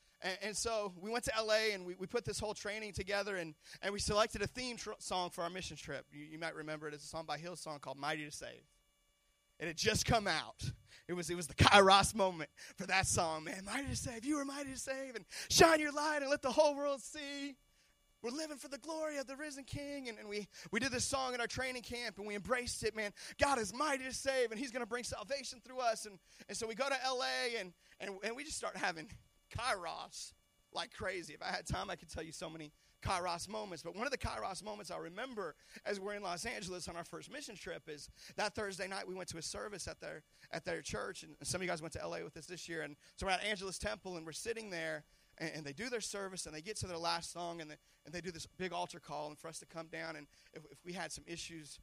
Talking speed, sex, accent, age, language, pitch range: 270 wpm, male, American, 30-49, English, 165-235 Hz